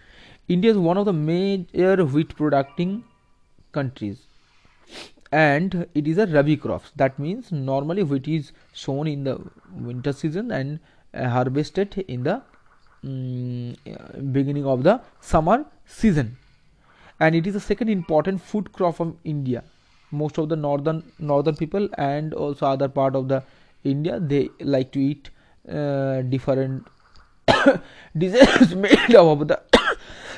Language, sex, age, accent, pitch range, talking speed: English, male, 30-49, Indian, 135-170 Hz, 135 wpm